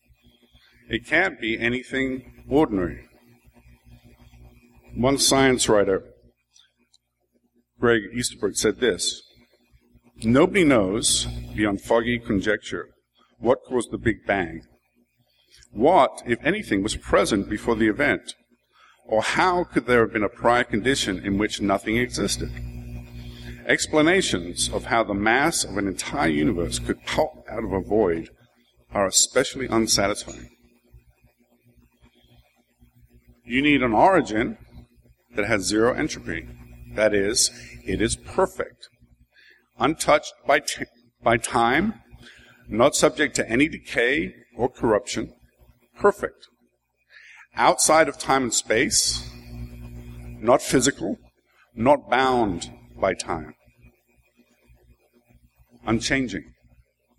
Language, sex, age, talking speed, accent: English, male, 50-69, 105 wpm, American